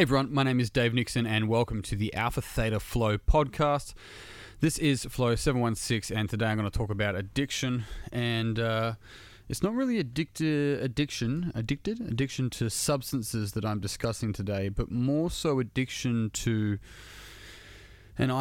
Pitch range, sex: 100-125 Hz, male